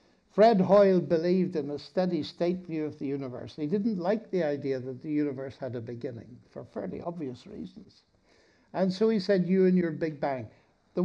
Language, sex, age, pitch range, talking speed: English, male, 60-79, 160-205 Hz, 190 wpm